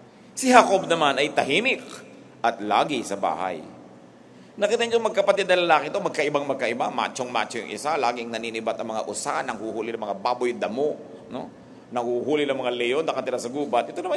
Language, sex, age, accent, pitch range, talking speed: English, male, 50-69, Filipino, 120-155 Hz, 165 wpm